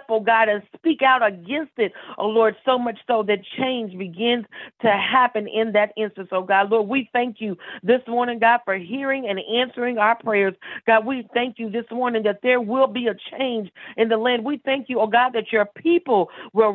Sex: female